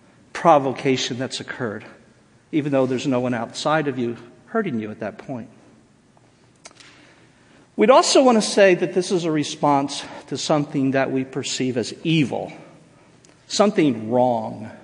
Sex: male